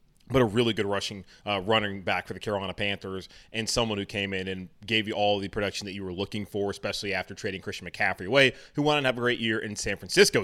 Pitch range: 100-120 Hz